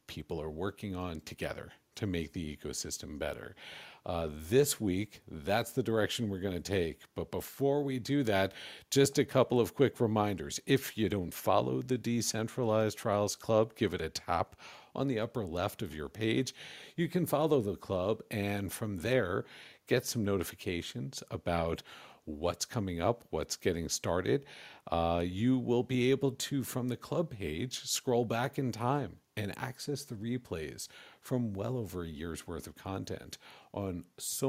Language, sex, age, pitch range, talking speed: English, male, 50-69, 95-130 Hz, 165 wpm